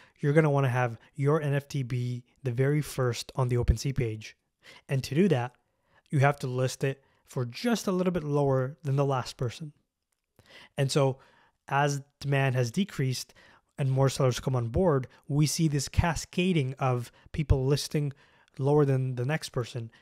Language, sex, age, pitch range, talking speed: English, male, 20-39, 125-150 Hz, 175 wpm